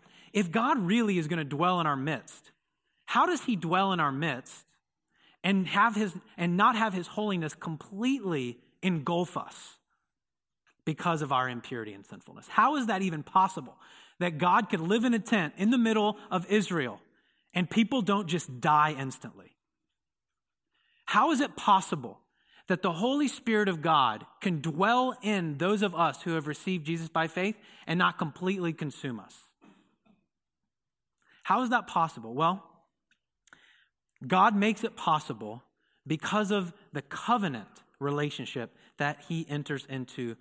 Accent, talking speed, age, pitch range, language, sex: American, 150 wpm, 30-49, 140-200 Hz, English, male